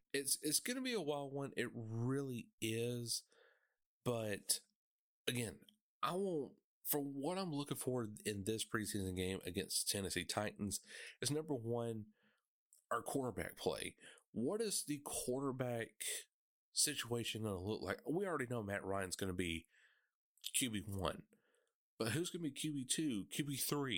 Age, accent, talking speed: 30-49, American, 145 wpm